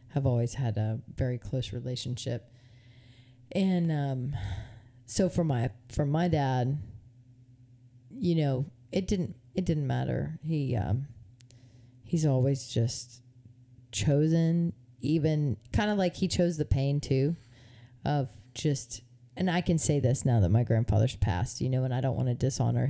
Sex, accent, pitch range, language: female, American, 120-145 Hz, English